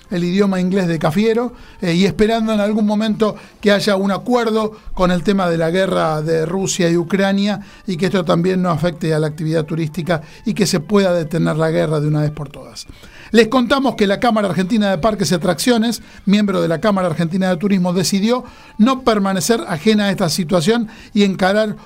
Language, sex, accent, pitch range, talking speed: Spanish, male, Argentinian, 180-215 Hz, 200 wpm